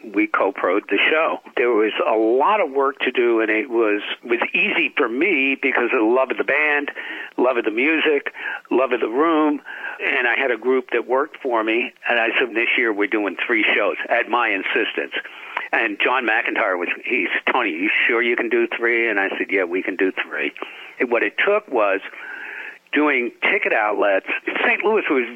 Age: 60-79